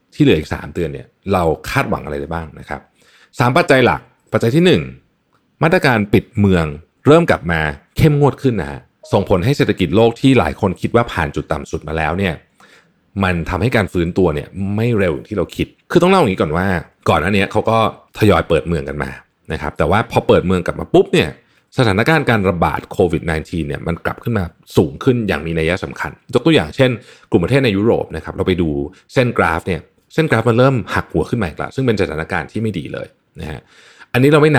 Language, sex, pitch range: Thai, male, 85-120 Hz